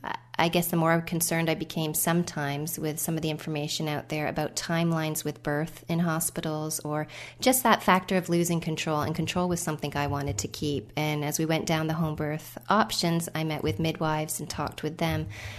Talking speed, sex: 205 wpm, female